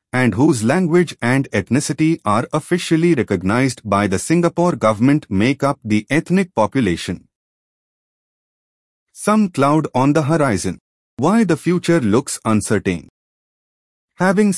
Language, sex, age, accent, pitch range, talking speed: English, male, 30-49, Indian, 105-160 Hz, 115 wpm